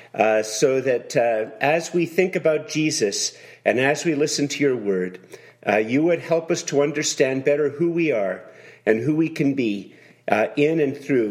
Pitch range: 120-155 Hz